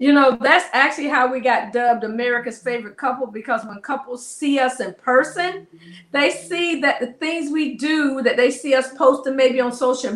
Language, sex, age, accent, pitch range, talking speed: English, female, 40-59, American, 250-300 Hz, 195 wpm